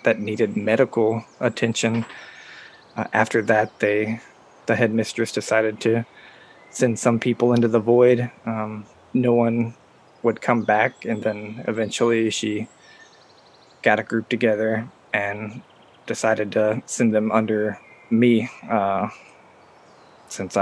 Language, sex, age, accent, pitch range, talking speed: English, male, 20-39, American, 105-115 Hz, 120 wpm